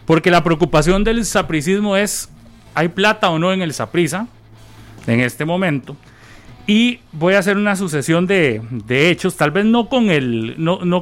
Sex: male